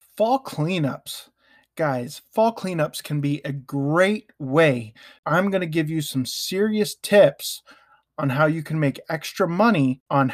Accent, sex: American, male